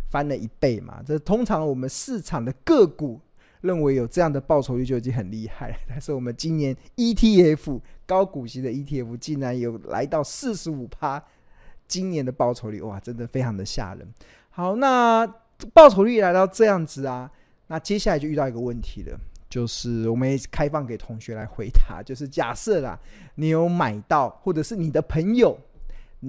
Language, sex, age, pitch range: Chinese, male, 20-39, 120-165 Hz